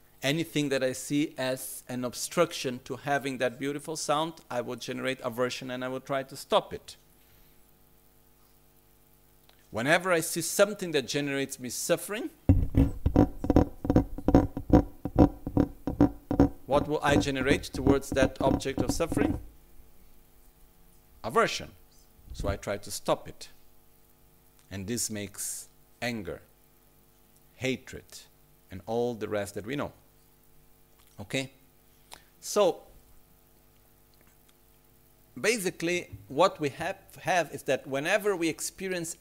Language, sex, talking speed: Italian, male, 110 wpm